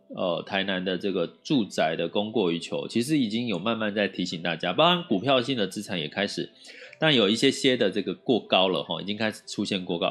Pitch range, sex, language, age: 100-155 Hz, male, Chinese, 30-49